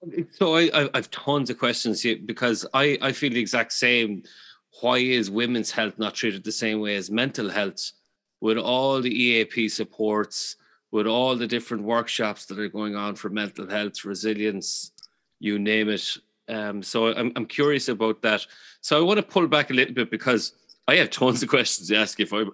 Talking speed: 200 wpm